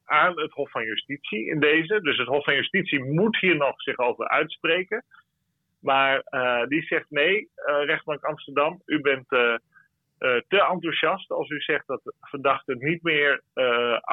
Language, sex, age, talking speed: Dutch, male, 40-59, 170 wpm